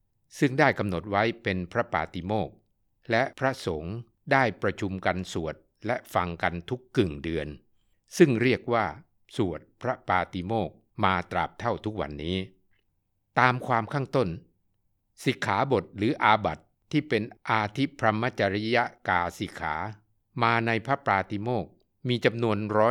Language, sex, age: Thai, male, 60-79